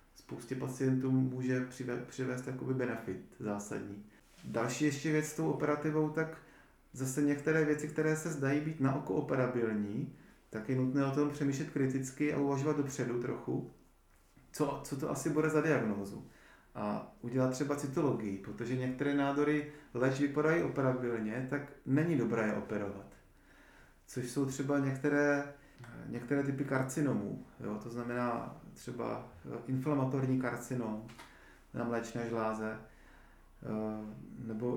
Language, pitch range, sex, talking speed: Czech, 120-145 Hz, male, 130 wpm